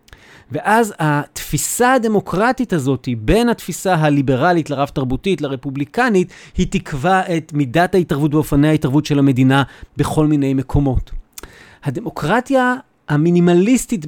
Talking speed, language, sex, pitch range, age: 100 wpm, Hebrew, male, 140-195 Hz, 30-49